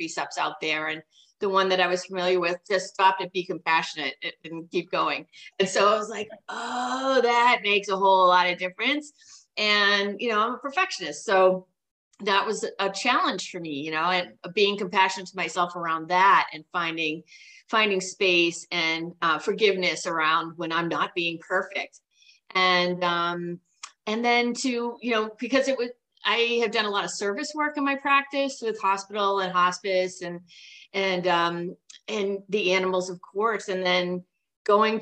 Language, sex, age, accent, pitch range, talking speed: English, female, 30-49, American, 175-215 Hz, 175 wpm